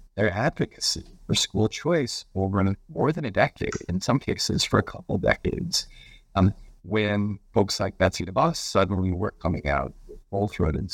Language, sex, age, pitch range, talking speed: English, male, 50-69, 75-100 Hz, 165 wpm